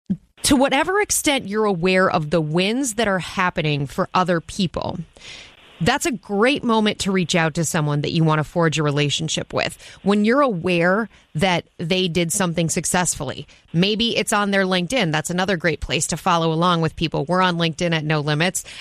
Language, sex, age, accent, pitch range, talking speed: English, female, 30-49, American, 165-205 Hz, 190 wpm